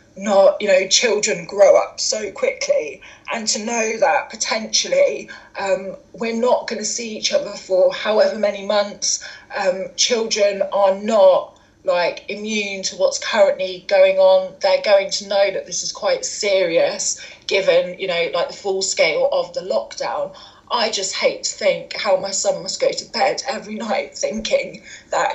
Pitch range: 190-280 Hz